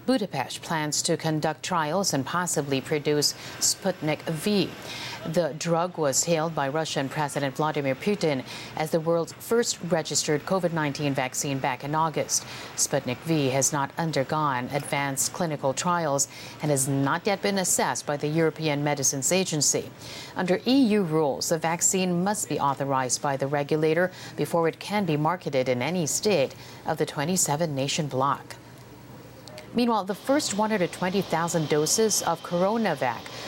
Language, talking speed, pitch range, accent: English, 140 wpm, 145-180 Hz, American